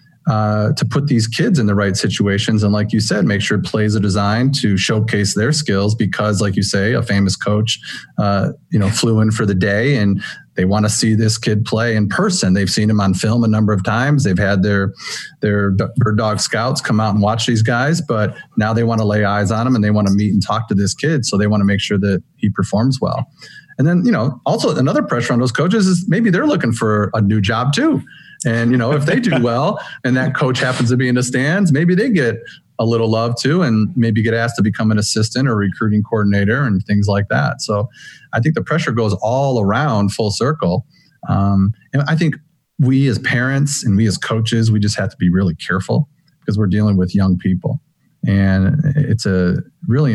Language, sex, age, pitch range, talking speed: English, male, 30-49, 100-130 Hz, 230 wpm